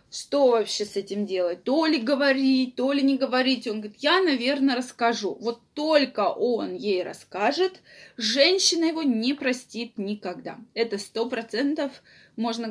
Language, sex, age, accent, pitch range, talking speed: Russian, female, 20-39, native, 225-280 Hz, 145 wpm